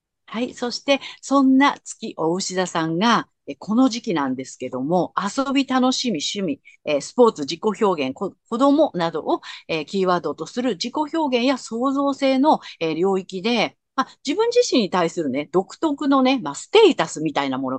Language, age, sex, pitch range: Japanese, 50-69, female, 175-275 Hz